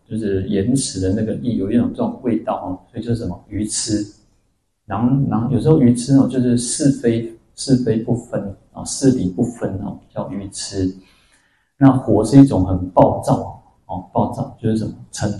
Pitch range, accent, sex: 100-120 Hz, native, male